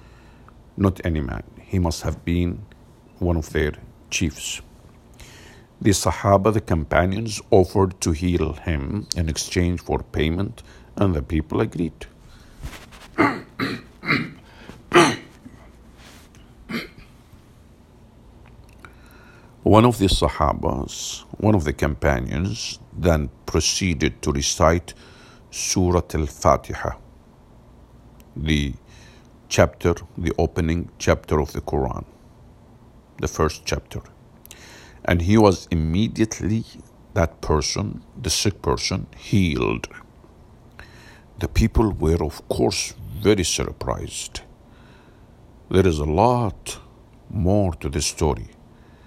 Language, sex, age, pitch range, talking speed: English, male, 60-79, 80-110 Hz, 95 wpm